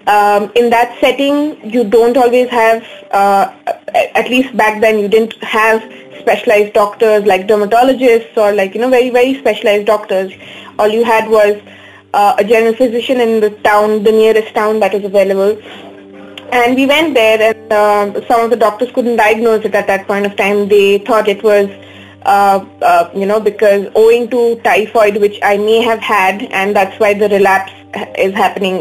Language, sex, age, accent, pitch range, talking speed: Hindi, female, 20-39, native, 200-235 Hz, 180 wpm